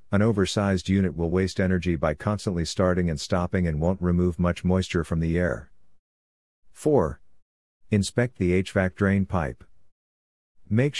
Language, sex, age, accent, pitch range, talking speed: English, male, 50-69, American, 85-105 Hz, 140 wpm